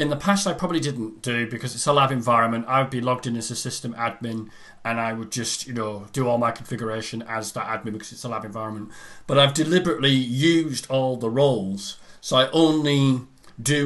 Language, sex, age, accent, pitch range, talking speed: English, male, 40-59, British, 115-150 Hz, 210 wpm